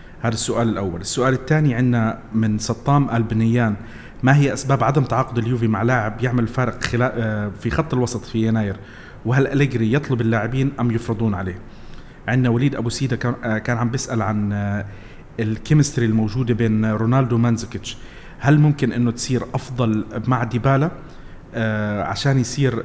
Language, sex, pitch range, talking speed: Arabic, male, 110-130 Hz, 140 wpm